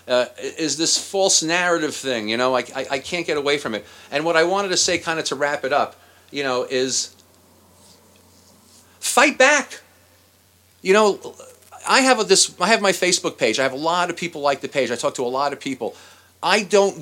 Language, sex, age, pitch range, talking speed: English, male, 40-59, 145-215 Hz, 215 wpm